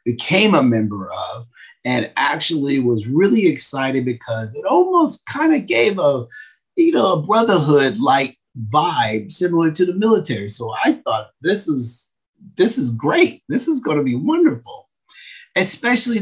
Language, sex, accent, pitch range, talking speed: English, male, American, 110-160 Hz, 150 wpm